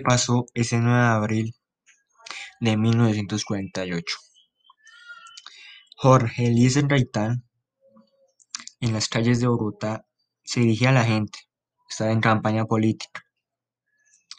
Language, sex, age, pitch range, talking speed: Spanish, male, 20-39, 110-145 Hz, 100 wpm